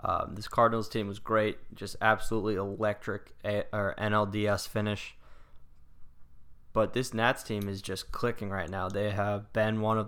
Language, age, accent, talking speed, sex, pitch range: English, 10-29, American, 160 wpm, male, 95-110 Hz